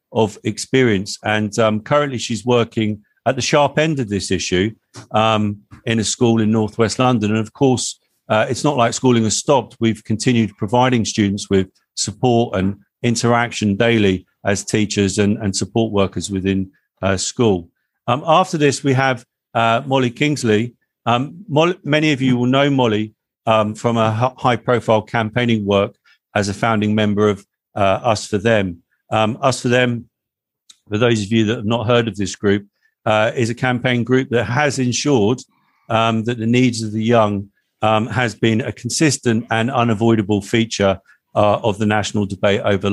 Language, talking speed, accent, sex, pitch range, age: English, 175 wpm, British, male, 105-120 Hz, 50-69